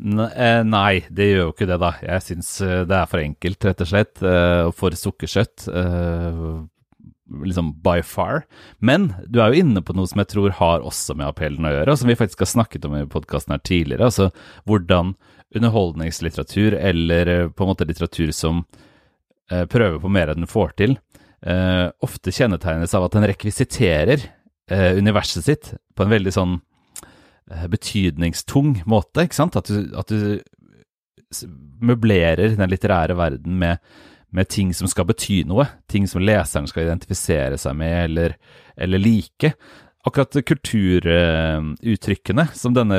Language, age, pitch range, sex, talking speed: English, 30-49, 85-105 Hz, male, 150 wpm